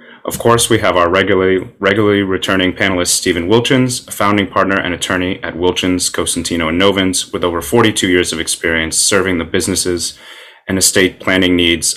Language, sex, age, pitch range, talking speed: English, male, 30-49, 90-105 Hz, 170 wpm